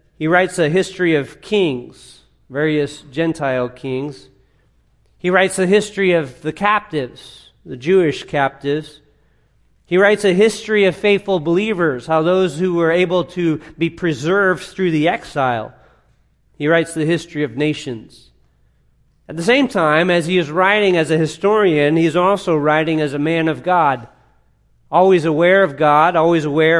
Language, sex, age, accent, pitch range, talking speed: English, male, 40-59, American, 145-180 Hz, 160 wpm